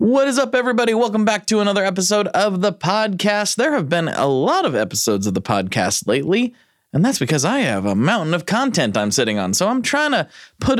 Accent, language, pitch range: American, English, 140-210 Hz